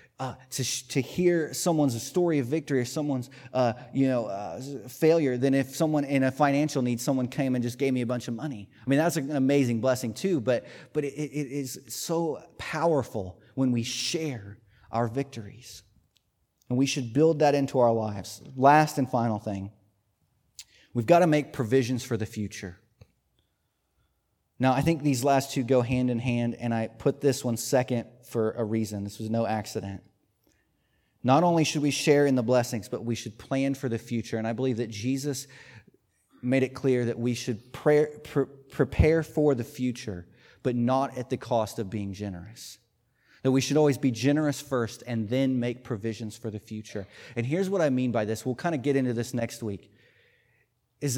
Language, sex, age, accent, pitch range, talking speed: English, male, 30-49, American, 115-140 Hz, 190 wpm